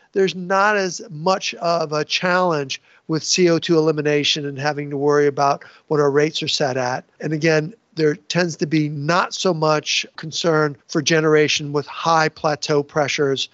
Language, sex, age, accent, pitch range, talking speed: English, male, 50-69, American, 150-190 Hz, 165 wpm